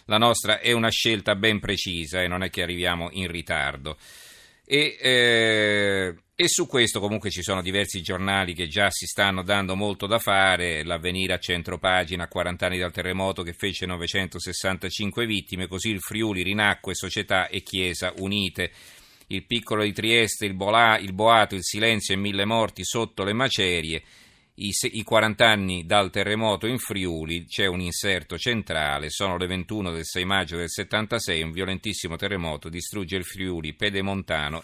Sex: male